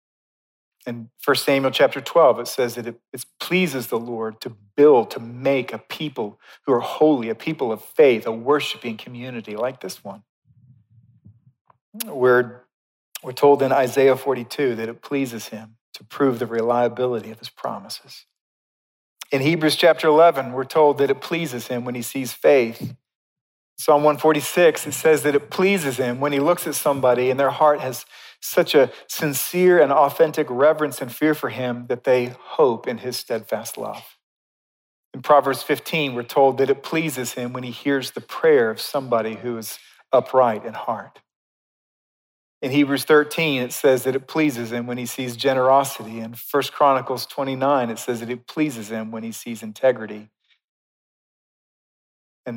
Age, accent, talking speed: 40-59, American, 165 wpm